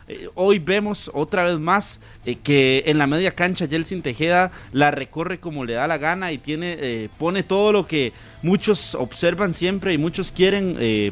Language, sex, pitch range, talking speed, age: Spanish, male, 135-180 Hz, 185 wpm, 30-49